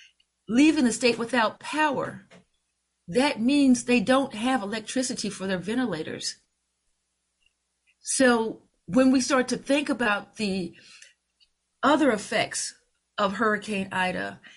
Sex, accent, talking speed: female, American, 110 wpm